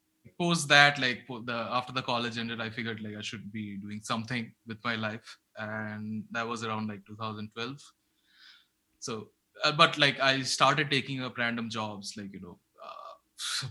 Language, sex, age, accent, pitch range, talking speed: English, male, 20-39, Indian, 110-135 Hz, 170 wpm